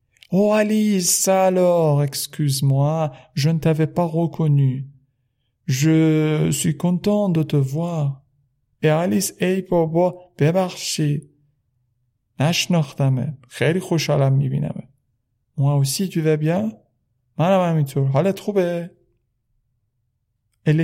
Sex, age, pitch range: male, 50-69, 125-160 Hz